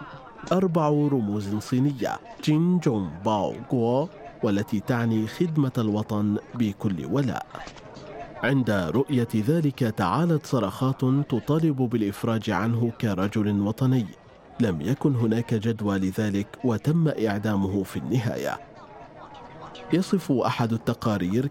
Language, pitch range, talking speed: Arabic, 105-135 Hz, 100 wpm